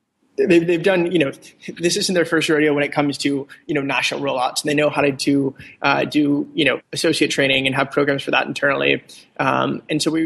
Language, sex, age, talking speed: English, male, 20-39, 230 wpm